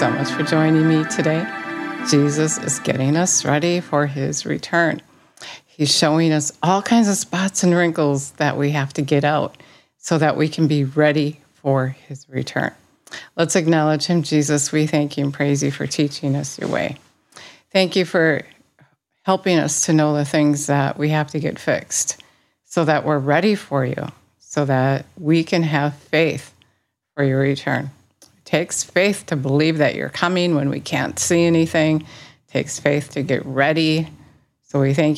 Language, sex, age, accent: English, female, 50-69, American